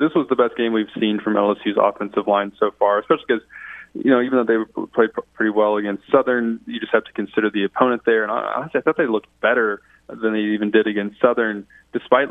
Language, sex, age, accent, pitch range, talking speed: English, male, 20-39, American, 100-115 Hz, 230 wpm